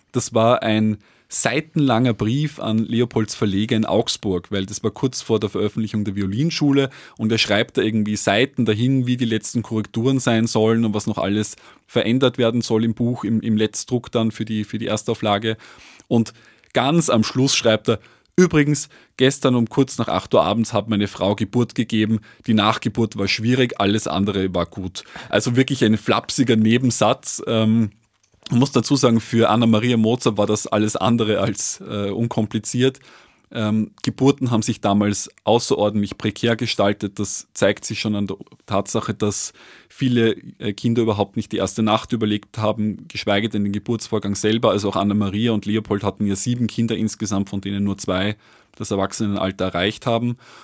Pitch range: 105-120 Hz